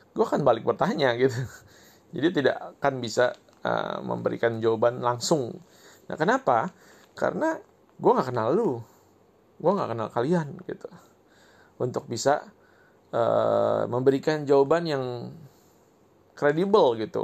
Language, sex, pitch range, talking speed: Indonesian, male, 120-185 Hz, 115 wpm